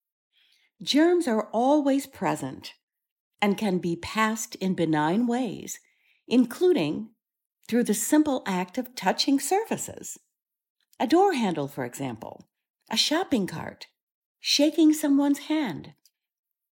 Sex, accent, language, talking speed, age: female, American, English, 110 wpm, 50-69